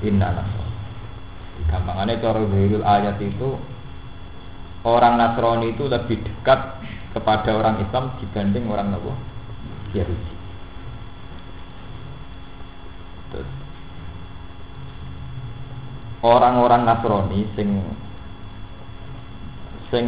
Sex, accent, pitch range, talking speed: male, native, 90-115 Hz, 55 wpm